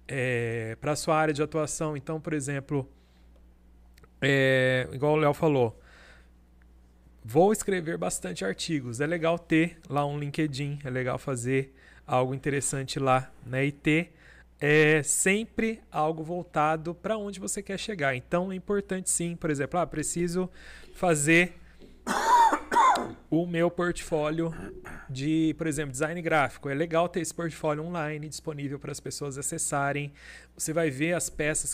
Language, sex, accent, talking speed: Portuguese, male, Brazilian, 140 wpm